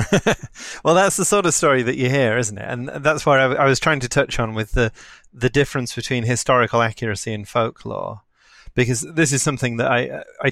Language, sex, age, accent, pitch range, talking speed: English, male, 30-49, British, 105-130 Hz, 210 wpm